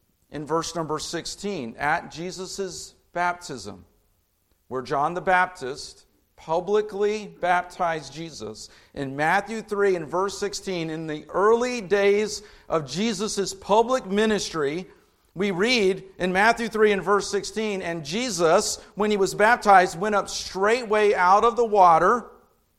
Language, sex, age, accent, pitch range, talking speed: English, male, 50-69, American, 135-200 Hz, 130 wpm